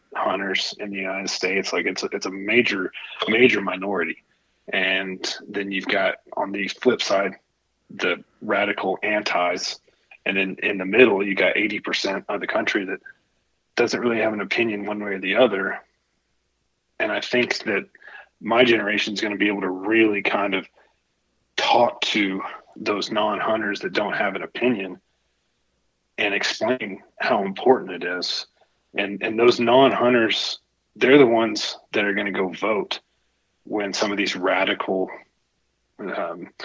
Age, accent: 30-49, American